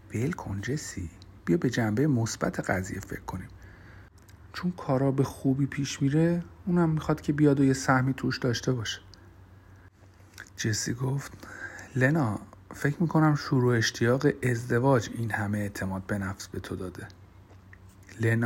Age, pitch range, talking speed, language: 50-69, 95-125 Hz, 140 wpm, Persian